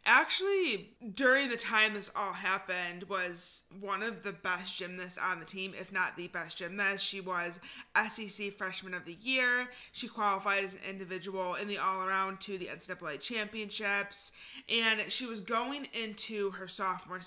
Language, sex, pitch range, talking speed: English, female, 185-225 Hz, 165 wpm